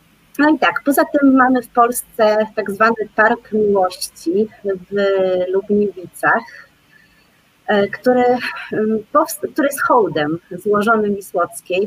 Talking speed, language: 105 wpm, Polish